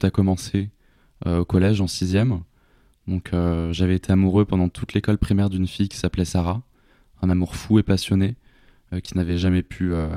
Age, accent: 20-39, French